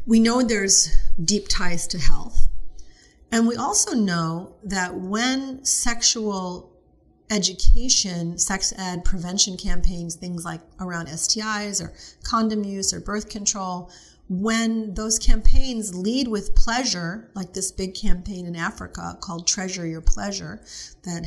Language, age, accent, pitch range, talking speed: English, 40-59, American, 170-220 Hz, 130 wpm